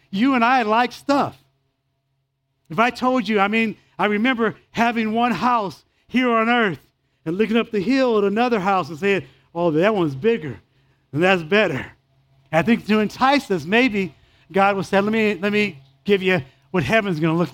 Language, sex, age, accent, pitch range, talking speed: English, male, 50-69, American, 135-210 Hz, 190 wpm